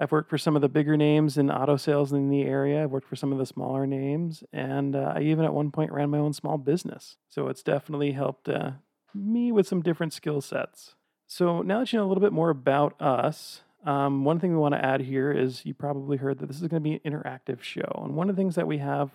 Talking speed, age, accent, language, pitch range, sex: 265 wpm, 40-59, American, English, 140-170 Hz, male